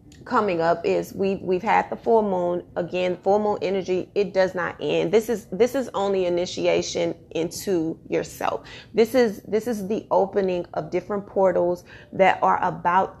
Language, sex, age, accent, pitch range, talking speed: English, female, 30-49, American, 170-195 Hz, 165 wpm